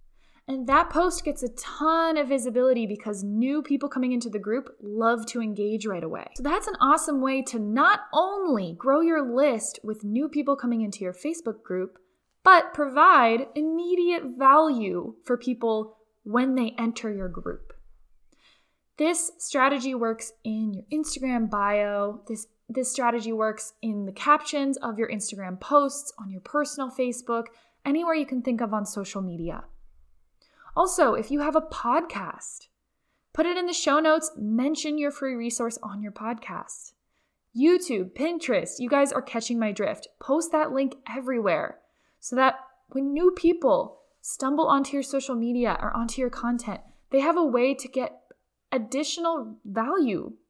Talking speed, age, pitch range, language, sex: 160 wpm, 10-29, 225-300 Hz, English, female